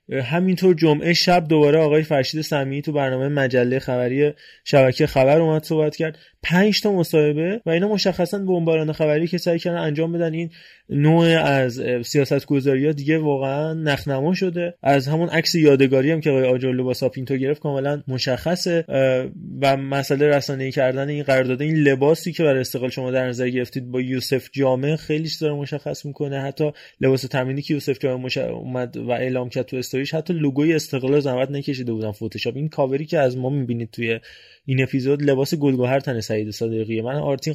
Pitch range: 130-155 Hz